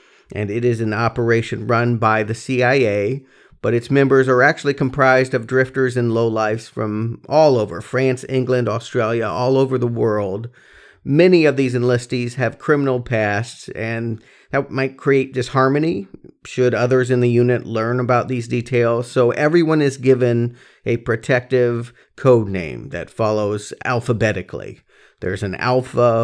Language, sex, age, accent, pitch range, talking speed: English, male, 40-59, American, 115-135 Hz, 145 wpm